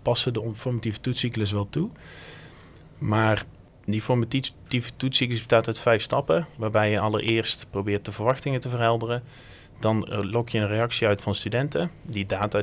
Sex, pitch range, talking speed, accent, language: male, 100-120 Hz, 150 wpm, Dutch, Dutch